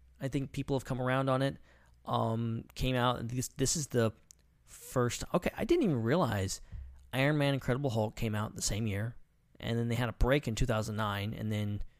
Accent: American